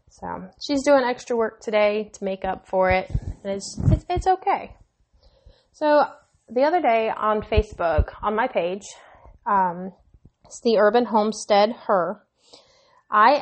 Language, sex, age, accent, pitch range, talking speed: English, female, 20-39, American, 200-255 Hz, 145 wpm